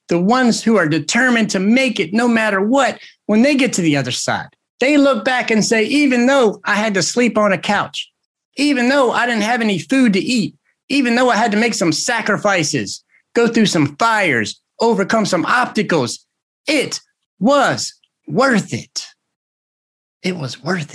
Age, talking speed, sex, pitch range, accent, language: 30-49, 180 wpm, male, 150-230 Hz, American, English